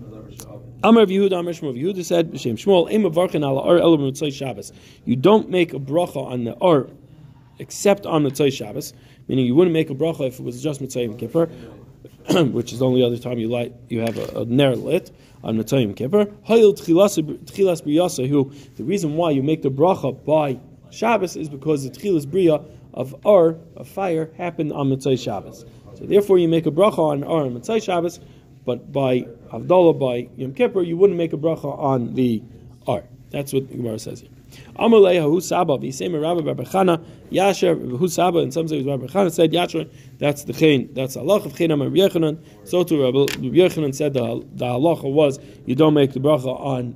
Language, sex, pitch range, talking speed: English, male, 125-170 Hz, 175 wpm